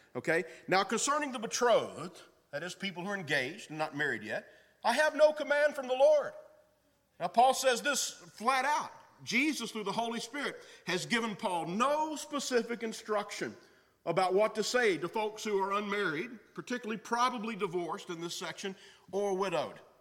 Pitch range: 160-250 Hz